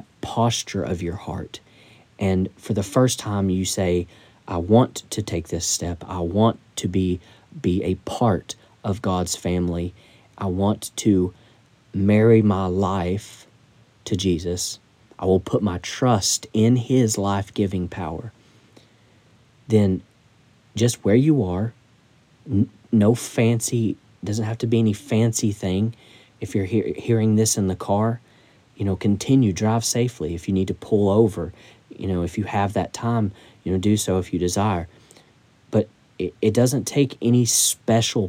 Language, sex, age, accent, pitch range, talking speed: English, male, 40-59, American, 95-115 Hz, 150 wpm